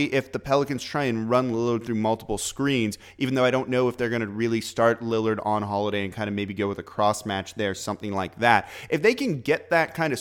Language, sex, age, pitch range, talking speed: English, male, 30-49, 110-140 Hz, 260 wpm